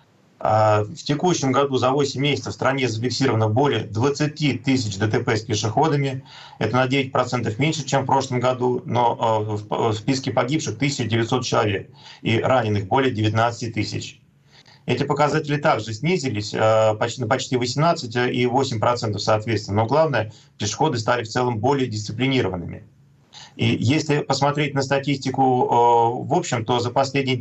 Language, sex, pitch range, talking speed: Russian, male, 115-140 Hz, 135 wpm